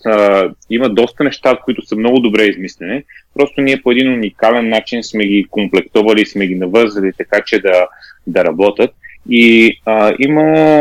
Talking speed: 155 wpm